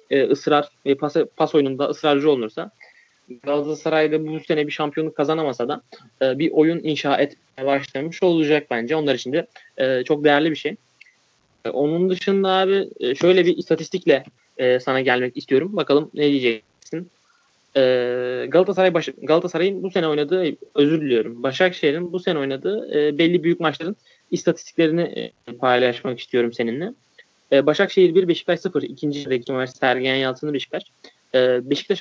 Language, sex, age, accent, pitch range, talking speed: Turkish, male, 30-49, native, 135-185 Hz, 135 wpm